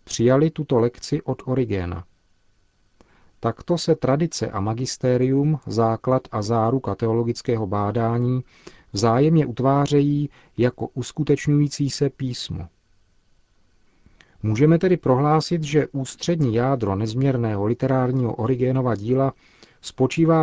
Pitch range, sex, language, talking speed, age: 110-140 Hz, male, Czech, 95 wpm, 40-59